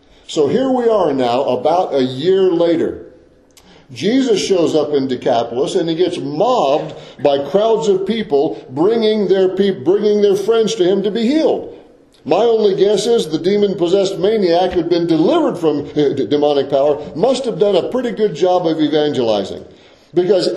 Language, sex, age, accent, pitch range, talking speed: English, male, 50-69, American, 140-195 Hz, 160 wpm